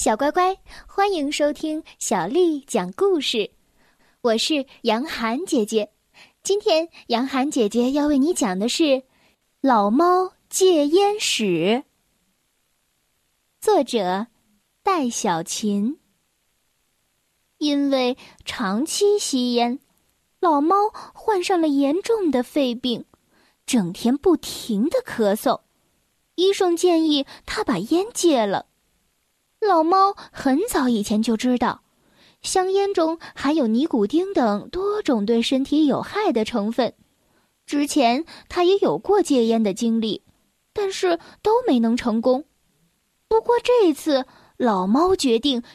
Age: 10-29